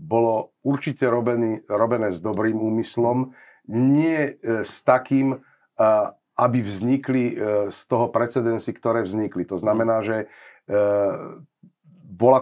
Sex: male